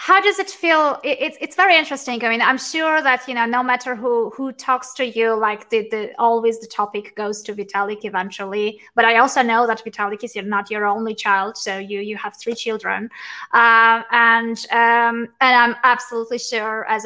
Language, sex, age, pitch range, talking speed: English, female, 20-39, 210-245 Hz, 200 wpm